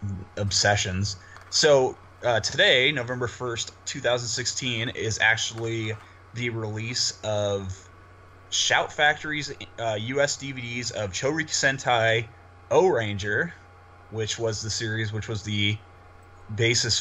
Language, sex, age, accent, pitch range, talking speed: English, male, 20-39, American, 100-115 Hz, 100 wpm